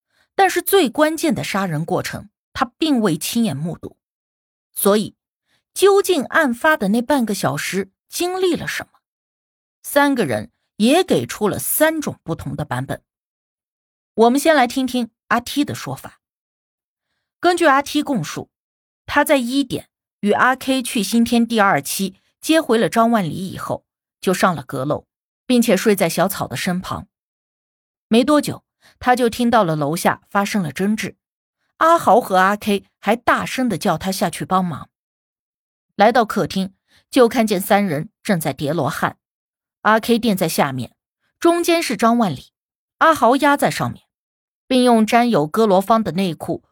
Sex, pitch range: female, 185-260 Hz